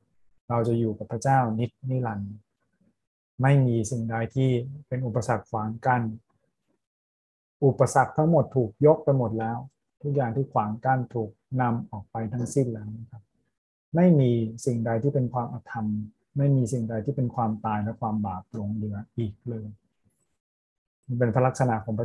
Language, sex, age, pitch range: Thai, male, 20-39, 110-130 Hz